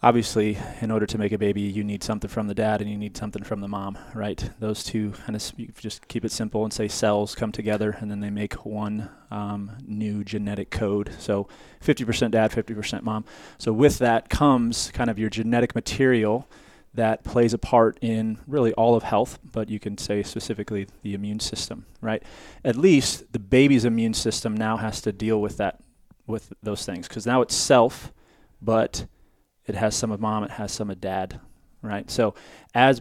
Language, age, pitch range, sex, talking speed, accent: English, 20-39, 105-115 Hz, male, 195 wpm, American